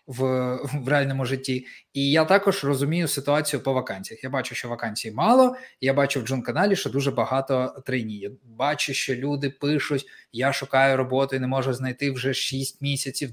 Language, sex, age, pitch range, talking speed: Ukrainian, male, 20-39, 130-170 Hz, 175 wpm